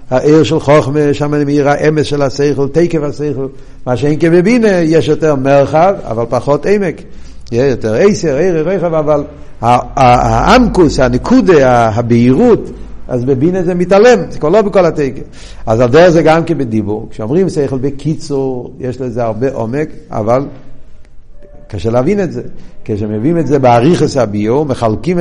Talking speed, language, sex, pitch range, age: 145 wpm, Hebrew, male, 130-180 Hz, 60-79